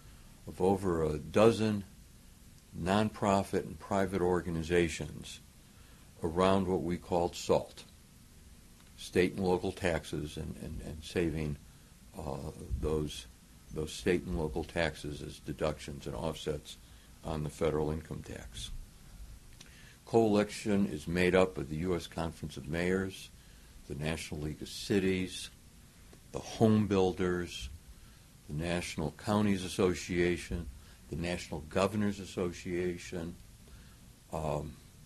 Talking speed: 110 wpm